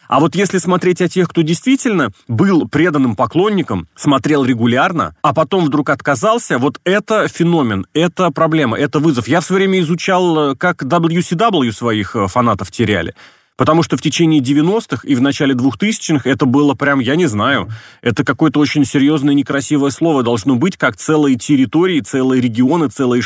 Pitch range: 125-160 Hz